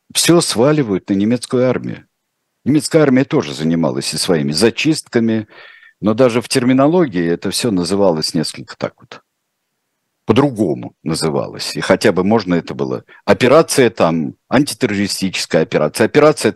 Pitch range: 95-130 Hz